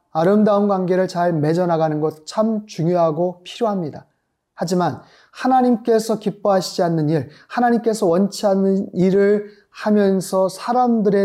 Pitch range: 165-205 Hz